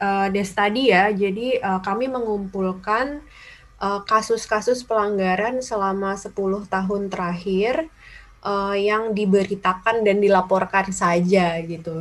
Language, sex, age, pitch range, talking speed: Indonesian, female, 20-39, 175-210 Hz, 110 wpm